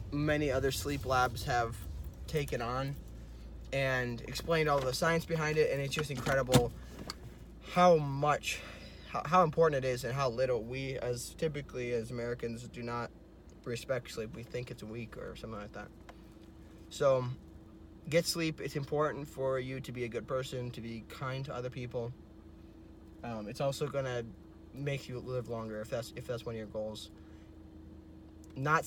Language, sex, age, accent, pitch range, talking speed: English, male, 20-39, American, 105-135 Hz, 165 wpm